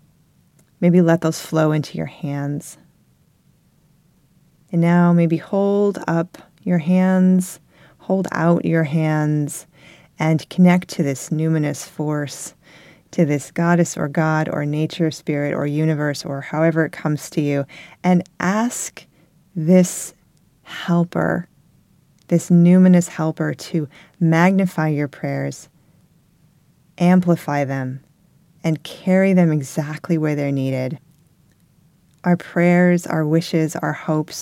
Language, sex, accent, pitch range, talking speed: English, female, American, 150-175 Hz, 115 wpm